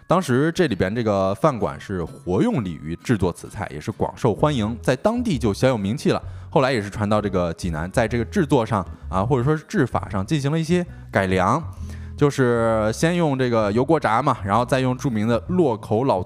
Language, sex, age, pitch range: Chinese, male, 20-39, 95-125 Hz